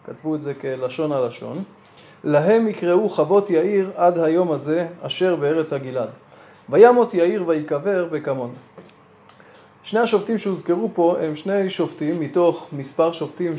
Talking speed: 130 wpm